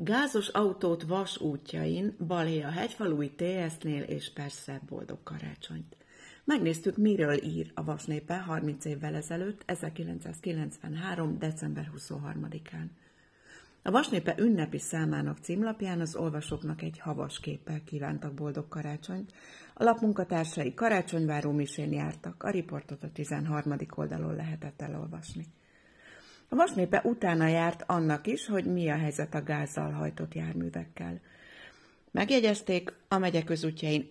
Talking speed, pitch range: 110 wpm, 140-180 Hz